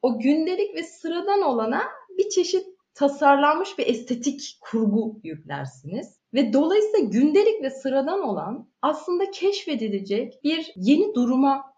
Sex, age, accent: female, 30-49, native